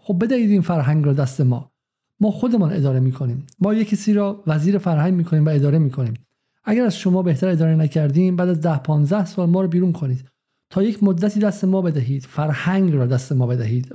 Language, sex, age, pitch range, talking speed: Persian, male, 50-69, 140-185 Hz, 215 wpm